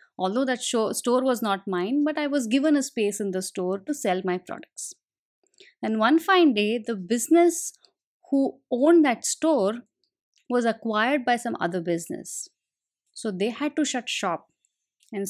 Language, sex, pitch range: English, female, 220-285 Hz